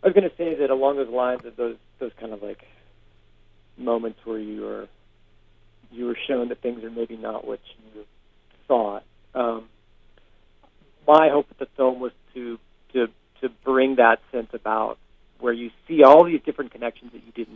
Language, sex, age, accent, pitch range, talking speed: English, male, 40-59, American, 110-130 Hz, 185 wpm